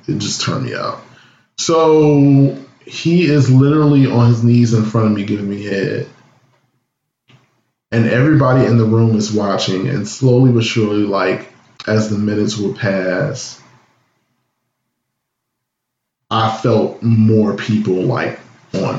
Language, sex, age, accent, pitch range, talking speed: English, male, 20-39, American, 110-130 Hz, 135 wpm